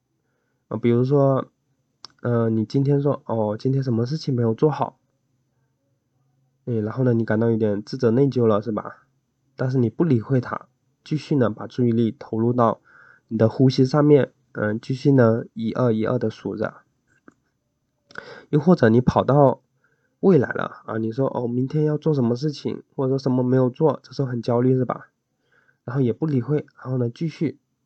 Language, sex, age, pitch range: Chinese, male, 20-39, 115-135 Hz